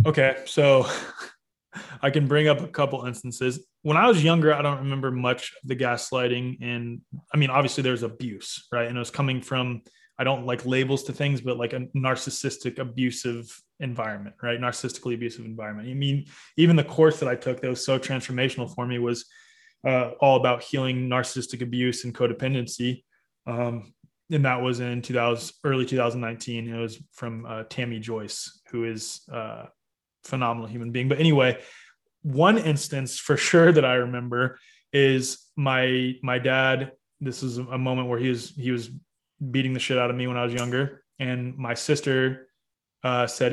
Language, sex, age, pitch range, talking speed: English, male, 20-39, 120-135 Hz, 175 wpm